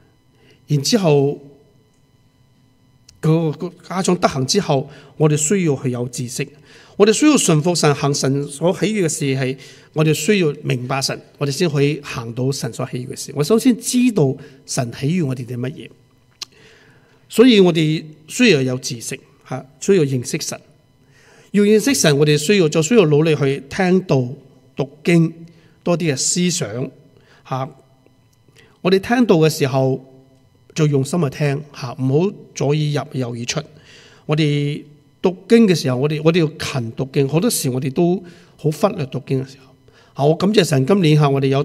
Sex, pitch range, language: male, 130-155 Hz, English